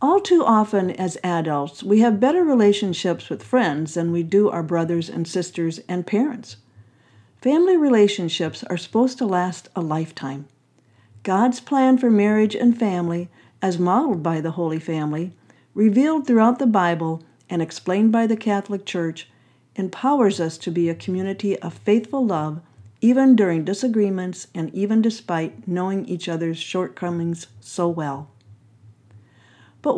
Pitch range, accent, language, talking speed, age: 155-205 Hz, American, English, 145 wpm, 50-69